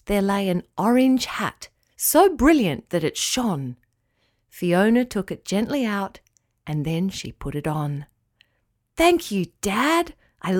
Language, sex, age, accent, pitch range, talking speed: English, female, 40-59, Australian, 185-285 Hz, 140 wpm